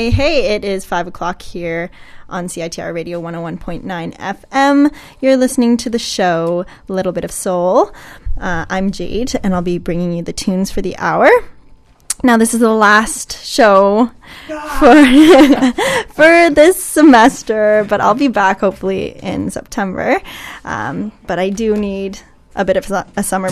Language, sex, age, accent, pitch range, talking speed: English, female, 10-29, American, 185-240 Hz, 155 wpm